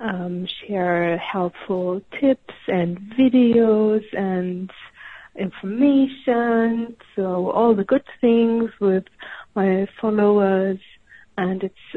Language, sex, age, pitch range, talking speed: English, female, 50-69, 190-220 Hz, 90 wpm